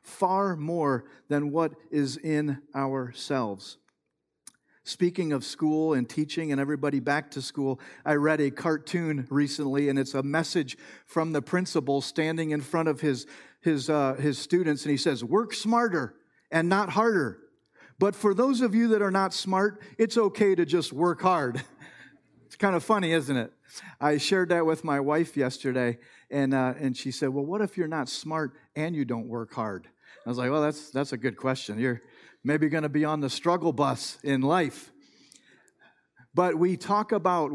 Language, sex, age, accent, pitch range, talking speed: English, male, 50-69, American, 140-180 Hz, 180 wpm